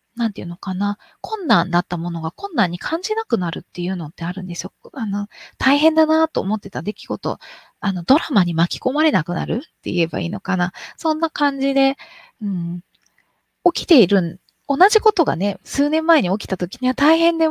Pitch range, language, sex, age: 190-310 Hz, Japanese, female, 20-39